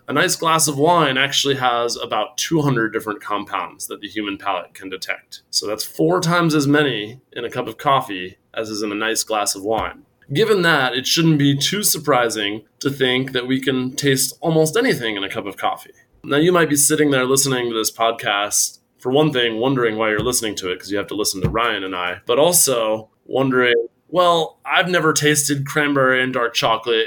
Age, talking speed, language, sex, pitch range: 20-39, 210 wpm, English, male, 120-150 Hz